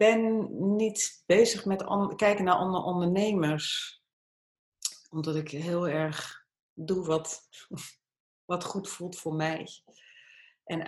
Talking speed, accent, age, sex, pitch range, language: 110 wpm, Dutch, 40-59, female, 155-195 Hz, Dutch